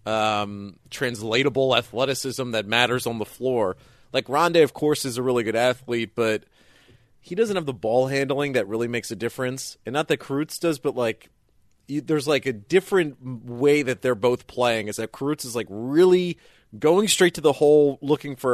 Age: 30-49